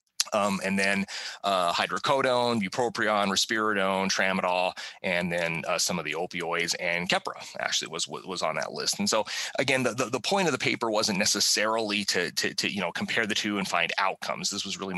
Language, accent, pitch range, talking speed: Italian, American, 95-105 Hz, 195 wpm